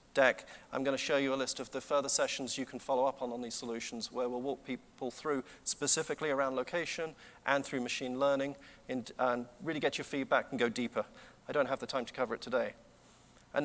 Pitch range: 135-170 Hz